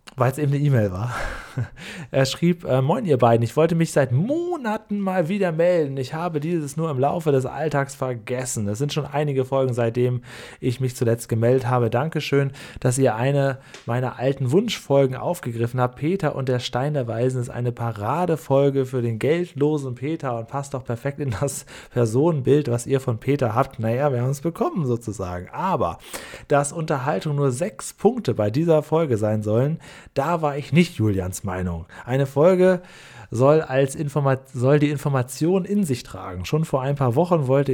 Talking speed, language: 180 wpm, German